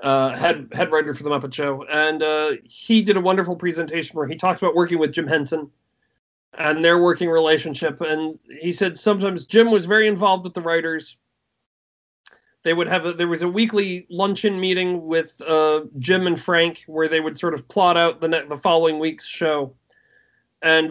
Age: 40-59